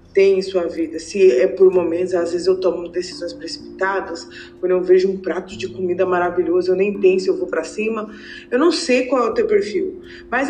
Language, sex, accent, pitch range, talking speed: Portuguese, female, Brazilian, 185-300 Hz, 215 wpm